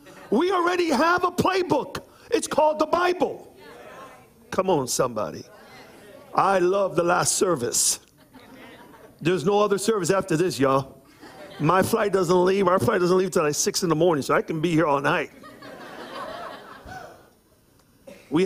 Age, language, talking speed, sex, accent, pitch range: 50-69, English, 150 wpm, male, American, 150-230 Hz